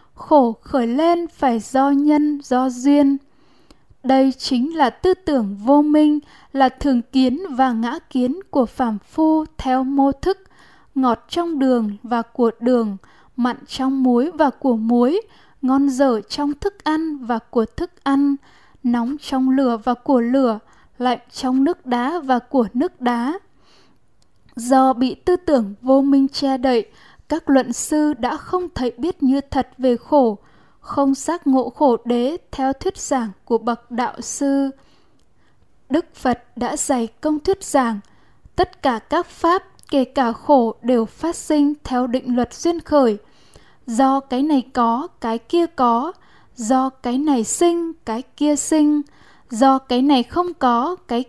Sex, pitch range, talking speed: female, 245-300 Hz, 160 wpm